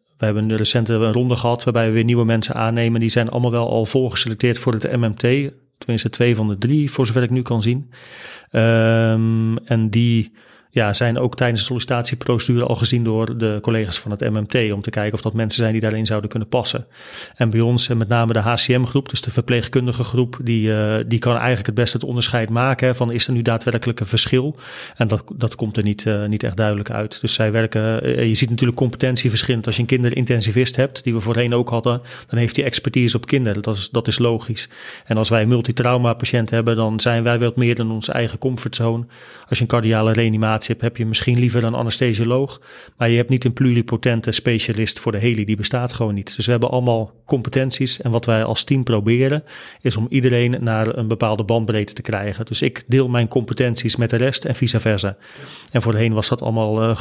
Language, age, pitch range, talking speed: Dutch, 40-59, 110-125 Hz, 215 wpm